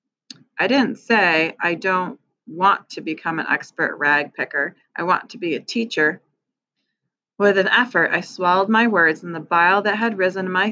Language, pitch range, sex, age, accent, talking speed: English, 170-215 Hz, female, 30-49, American, 185 wpm